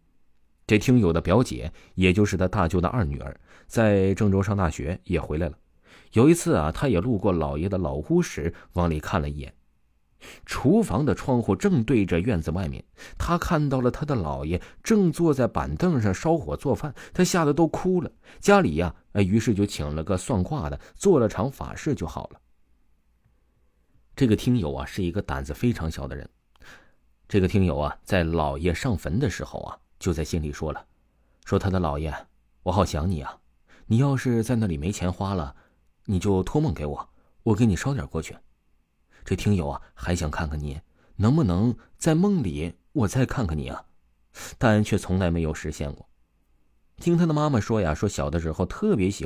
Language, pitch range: Chinese, 75-115 Hz